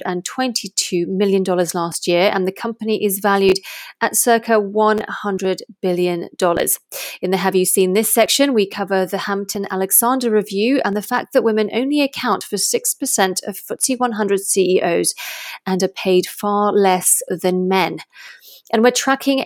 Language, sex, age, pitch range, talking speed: English, female, 30-49, 185-225 Hz, 165 wpm